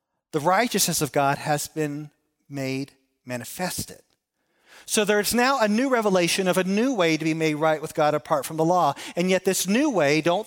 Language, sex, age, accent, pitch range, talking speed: English, male, 40-59, American, 155-215 Hz, 195 wpm